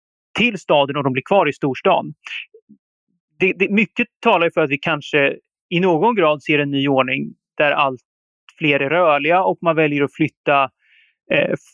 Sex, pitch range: male, 150-200 Hz